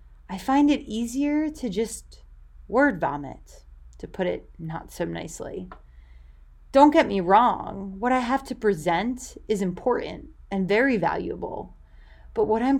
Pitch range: 160-235 Hz